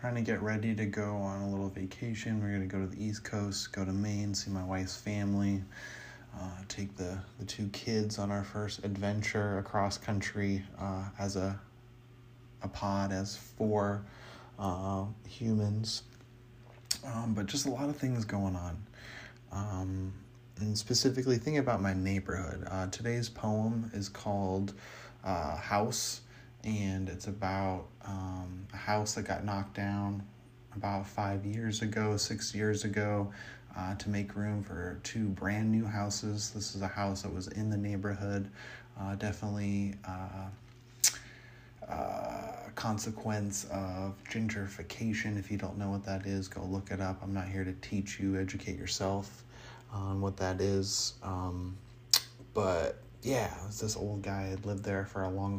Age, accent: 20-39, American